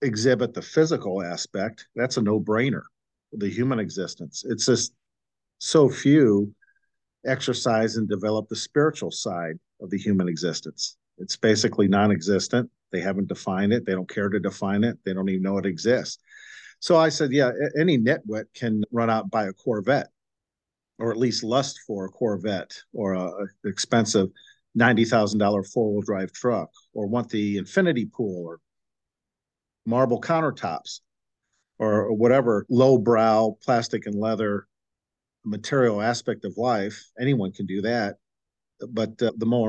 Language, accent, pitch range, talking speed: English, American, 100-125 Hz, 145 wpm